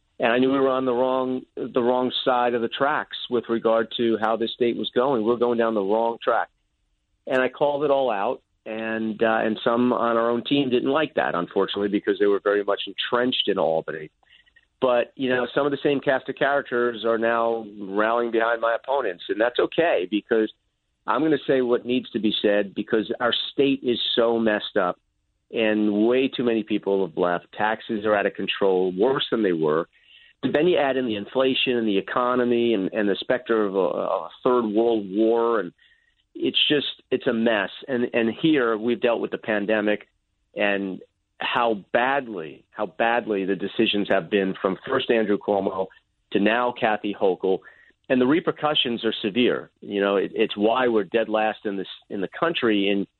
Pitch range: 105-125 Hz